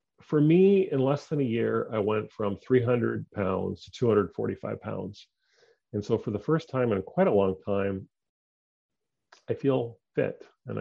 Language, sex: English, male